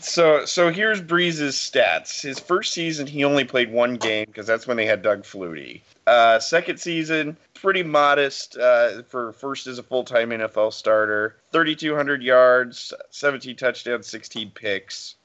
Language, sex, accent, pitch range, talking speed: English, male, American, 110-140 Hz, 155 wpm